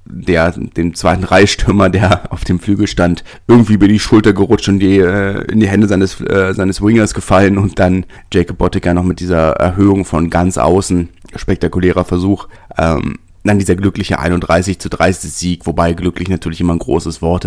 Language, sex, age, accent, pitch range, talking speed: German, male, 30-49, German, 85-100 Hz, 180 wpm